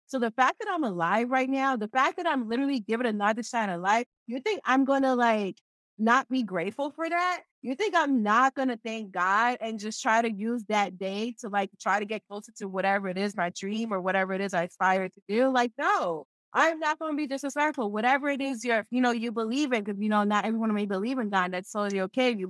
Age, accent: 20-39, American